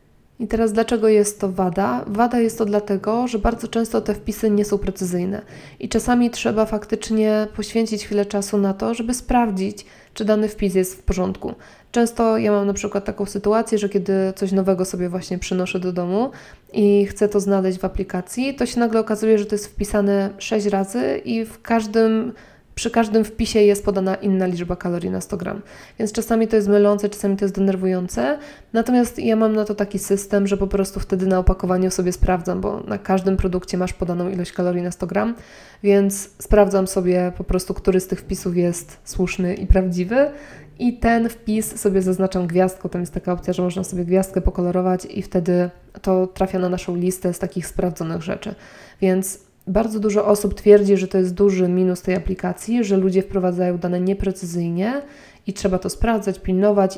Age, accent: 20-39, native